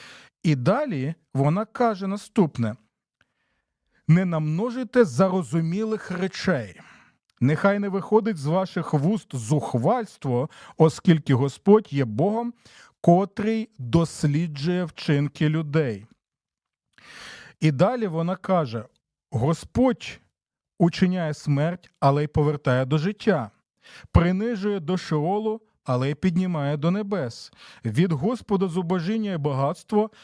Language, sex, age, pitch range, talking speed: Ukrainian, male, 40-59, 145-200 Hz, 95 wpm